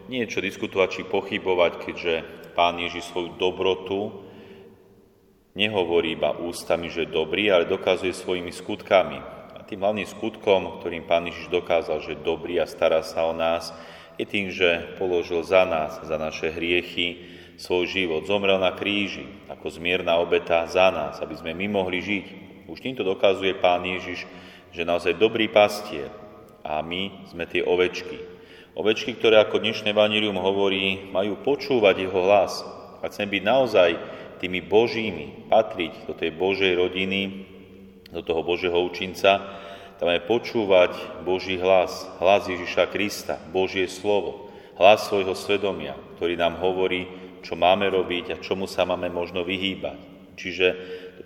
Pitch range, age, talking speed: 85-95 Hz, 30-49, 145 wpm